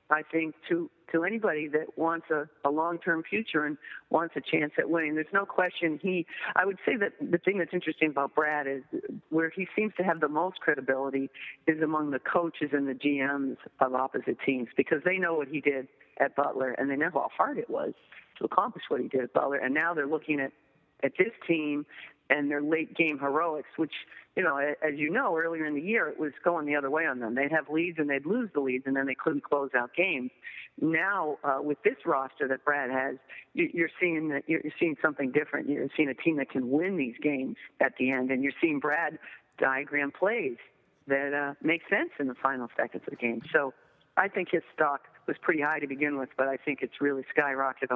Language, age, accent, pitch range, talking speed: English, 50-69, American, 135-165 Hz, 225 wpm